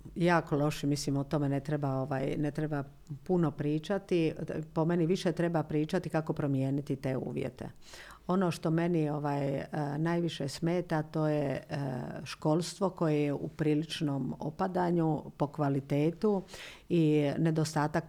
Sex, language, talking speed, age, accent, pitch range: female, Croatian, 135 wpm, 50-69, native, 150-180 Hz